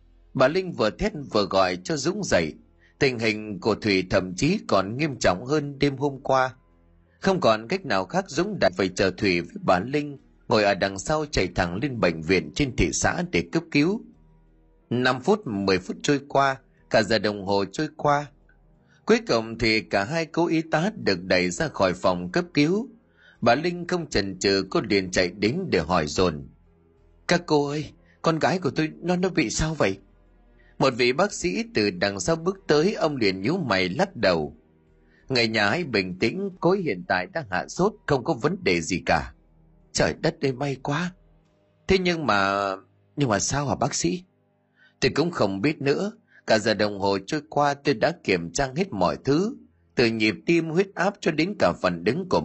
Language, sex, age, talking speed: Vietnamese, male, 30-49, 200 wpm